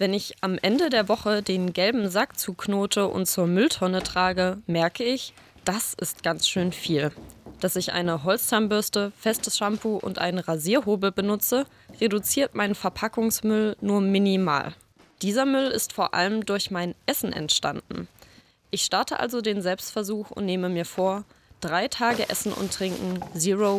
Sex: female